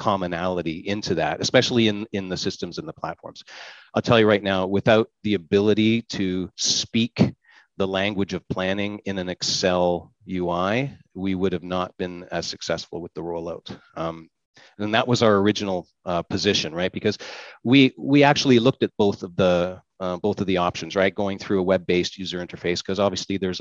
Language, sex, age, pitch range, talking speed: English, male, 40-59, 90-115 Hz, 185 wpm